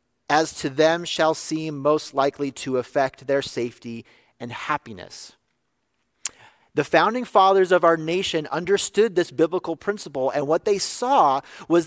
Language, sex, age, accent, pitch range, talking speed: English, male, 40-59, American, 140-185 Hz, 140 wpm